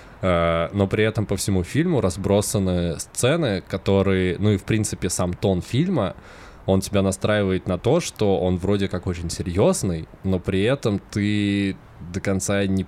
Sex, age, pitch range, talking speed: male, 20-39, 90-100 Hz, 160 wpm